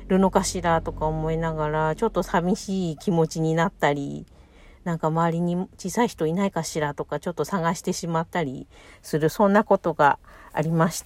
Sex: female